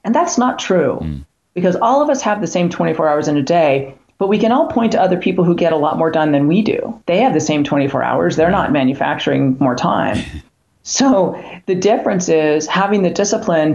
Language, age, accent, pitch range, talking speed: English, 40-59, American, 155-205 Hz, 225 wpm